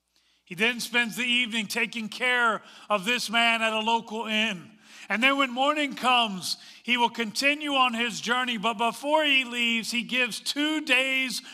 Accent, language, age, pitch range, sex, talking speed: American, English, 40-59, 200-245 Hz, male, 170 wpm